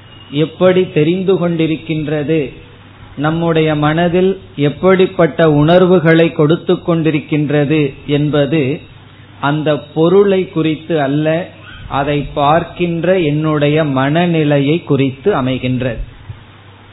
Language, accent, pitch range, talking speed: Tamil, native, 135-165 Hz, 70 wpm